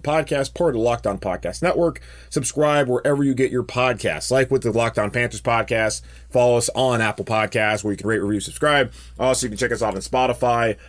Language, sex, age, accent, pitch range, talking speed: English, male, 20-39, American, 105-145 Hz, 210 wpm